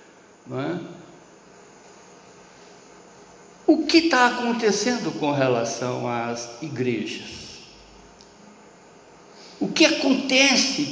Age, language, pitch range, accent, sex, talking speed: 60-79, Portuguese, 140-235 Hz, Brazilian, male, 65 wpm